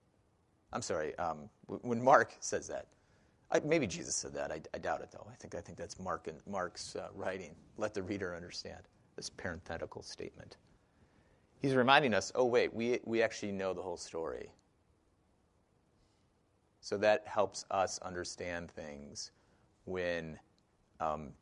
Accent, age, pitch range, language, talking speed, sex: American, 30-49, 90-120 Hz, English, 150 wpm, male